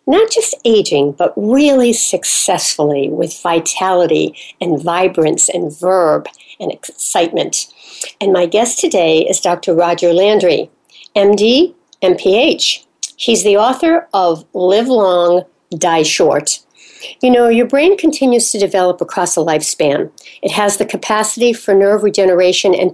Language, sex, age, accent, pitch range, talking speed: English, female, 60-79, American, 180-250 Hz, 130 wpm